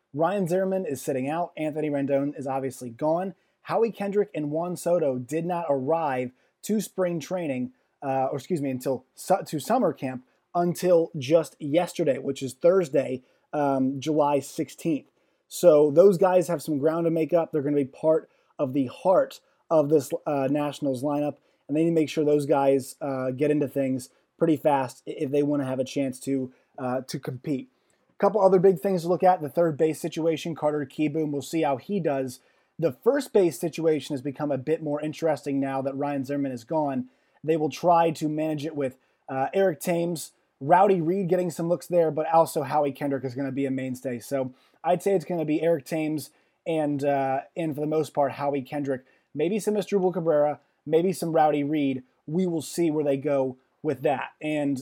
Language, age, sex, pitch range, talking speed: English, 20-39, male, 140-170 Hz, 200 wpm